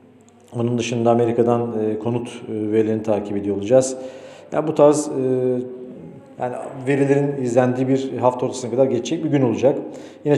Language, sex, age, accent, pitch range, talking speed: Turkish, male, 40-59, native, 115-140 Hz, 150 wpm